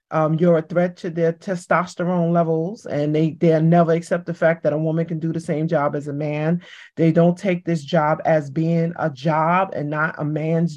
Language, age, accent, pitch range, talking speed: English, 30-49, American, 160-180 Hz, 215 wpm